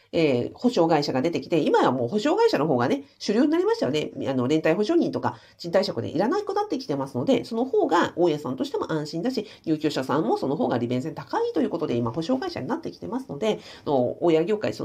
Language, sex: Japanese, female